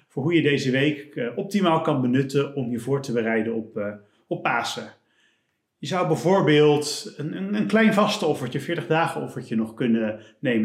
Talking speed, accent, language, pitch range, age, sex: 185 wpm, Dutch, Dutch, 125-160 Hz, 40-59, male